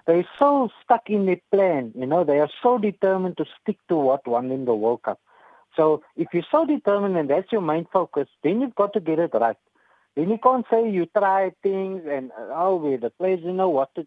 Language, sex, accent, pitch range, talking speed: English, male, Indian, 145-200 Hz, 225 wpm